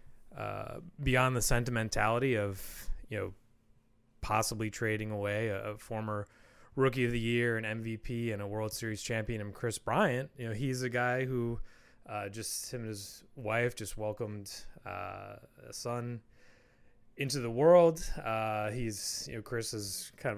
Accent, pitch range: American, 110-125 Hz